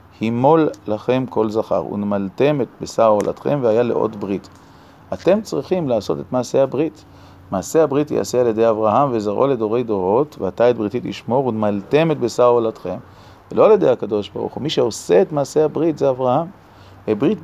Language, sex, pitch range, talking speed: Hebrew, male, 110-145 Hz, 160 wpm